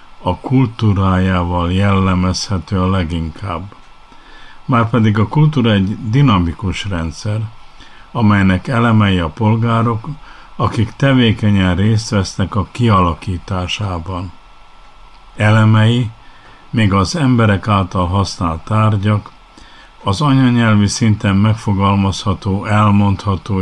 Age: 50-69